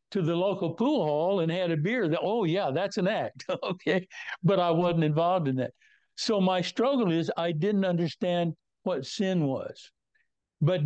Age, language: 60-79, English